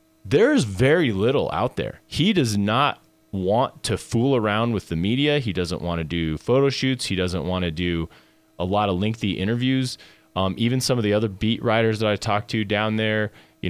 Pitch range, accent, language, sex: 95-125 Hz, American, English, male